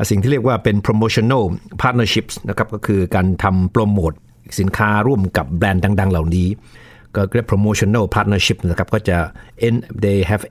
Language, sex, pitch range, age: Thai, male, 95-115 Hz, 60-79